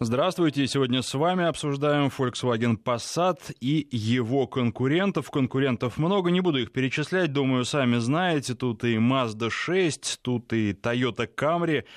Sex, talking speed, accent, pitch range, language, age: male, 135 wpm, native, 115-145 Hz, Russian, 20-39